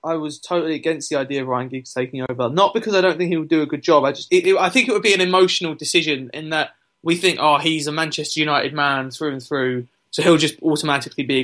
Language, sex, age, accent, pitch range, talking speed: English, male, 20-39, British, 150-180 Hz, 280 wpm